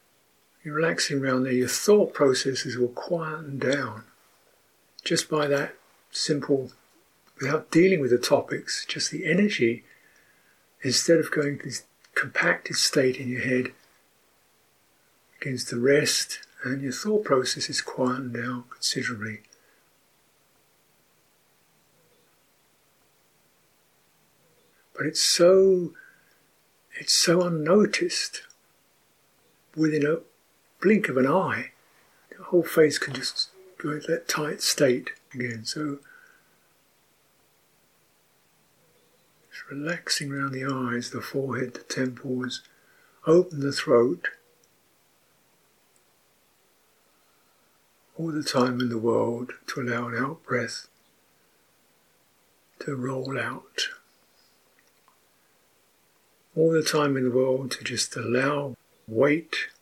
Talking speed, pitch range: 100 wpm, 125-160 Hz